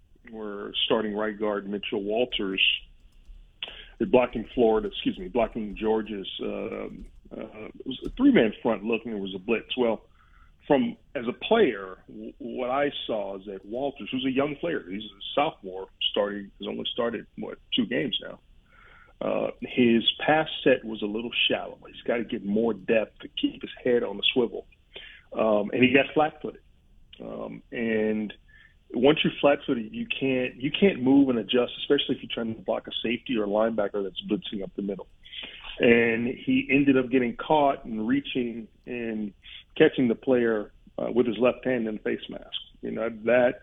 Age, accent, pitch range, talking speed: 40-59, American, 105-135 Hz, 180 wpm